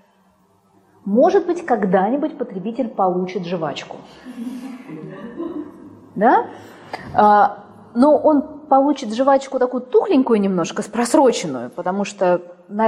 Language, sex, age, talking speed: Russian, female, 20-39, 85 wpm